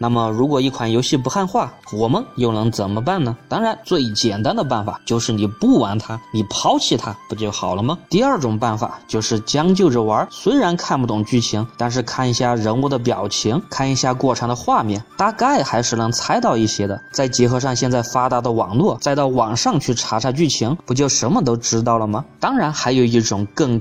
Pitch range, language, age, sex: 115-135 Hz, Chinese, 20-39, male